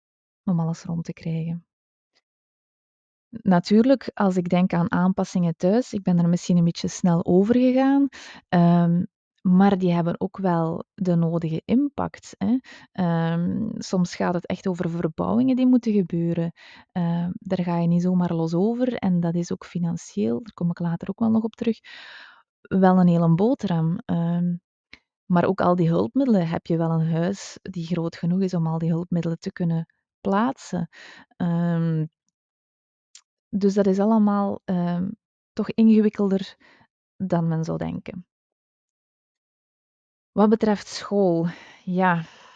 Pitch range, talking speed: 170-205 Hz, 140 wpm